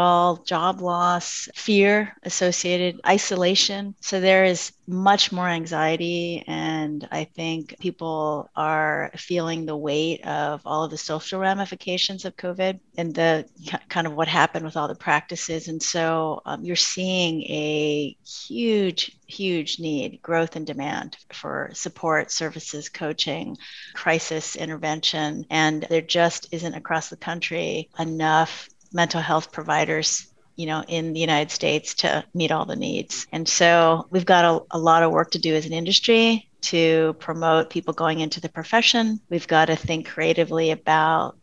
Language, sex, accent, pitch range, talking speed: English, female, American, 160-180 Hz, 150 wpm